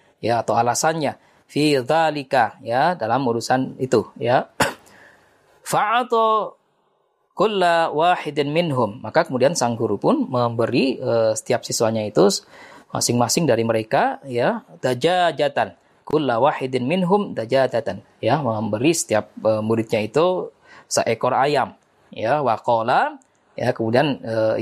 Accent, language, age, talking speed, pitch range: native, Indonesian, 20-39, 100 wpm, 115-165 Hz